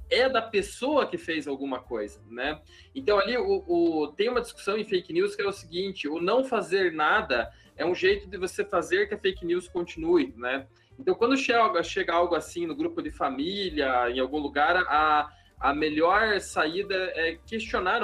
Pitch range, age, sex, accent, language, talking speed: 155-240 Hz, 20-39, male, Brazilian, Portuguese, 190 wpm